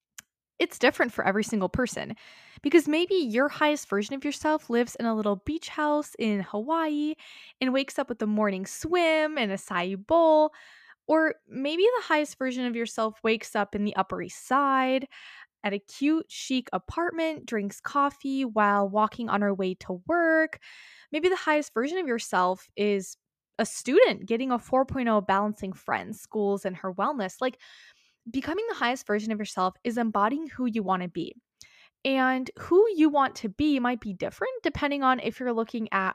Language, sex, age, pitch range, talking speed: English, female, 10-29, 215-300 Hz, 175 wpm